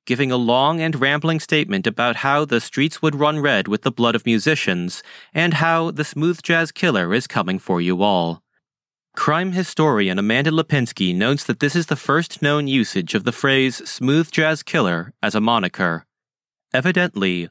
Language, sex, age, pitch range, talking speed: English, male, 30-49, 110-165 Hz, 175 wpm